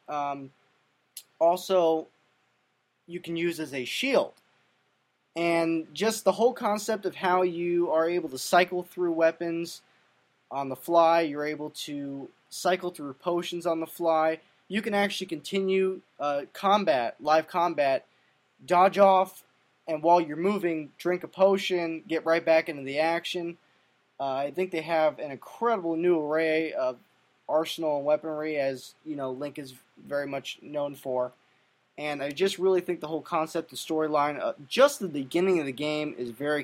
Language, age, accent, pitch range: English, 20-39, American, 140-175 Hz